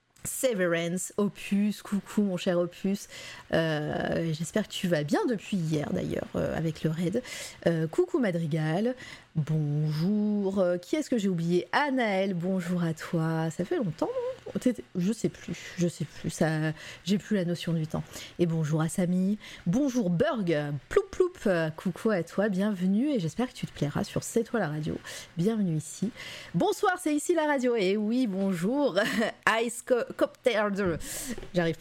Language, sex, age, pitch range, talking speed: French, female, 30-49, 165-230 Hz, 170 wpm